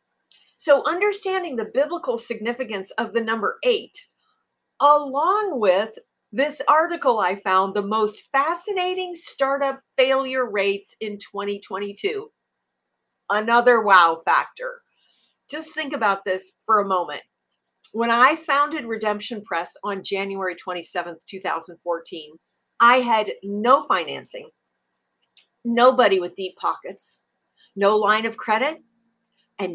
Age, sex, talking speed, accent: 50-69, female, 110 wpm, American